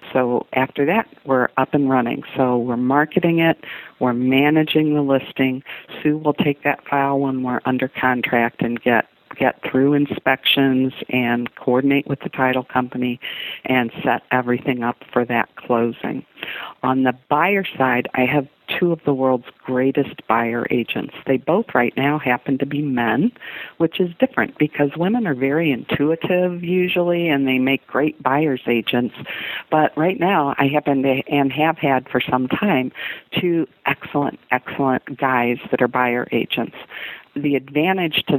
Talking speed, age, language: 160 wpm, 50-69, English